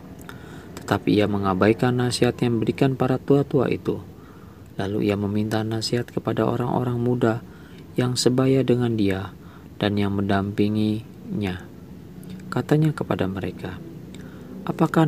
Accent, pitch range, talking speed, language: native, 100-125 Hz, 105 wpm, Indonesian